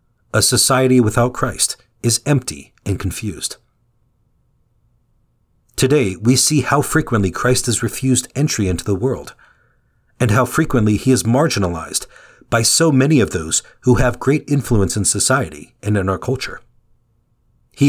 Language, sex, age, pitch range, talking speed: English, male, 40-59, 110-130 Hz, 140 wpm